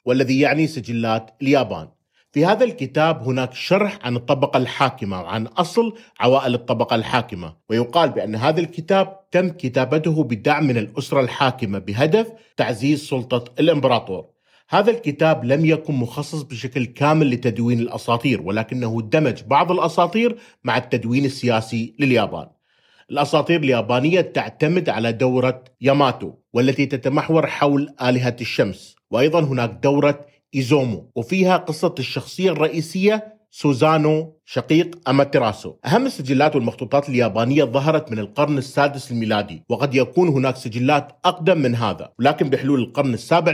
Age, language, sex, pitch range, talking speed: 40-59, Arabic, male, 120-155 Hz, 125 wpm